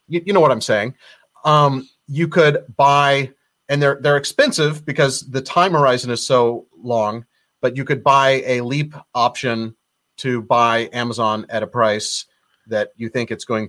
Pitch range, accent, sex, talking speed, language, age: 115-150 Hz, American, male, 165 wpm, English, 30-49